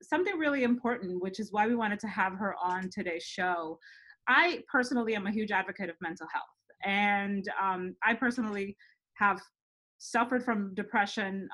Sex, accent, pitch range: female, American, 195-245 Hz